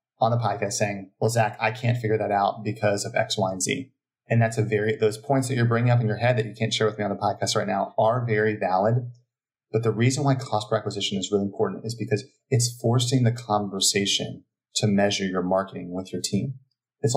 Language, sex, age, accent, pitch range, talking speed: English, male, 30-49, American, 100-120 Hz, 240 wpm